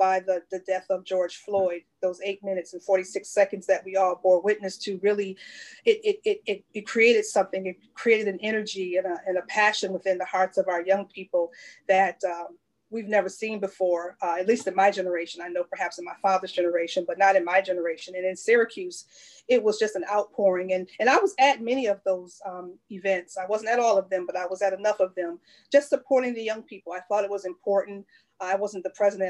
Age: 40-59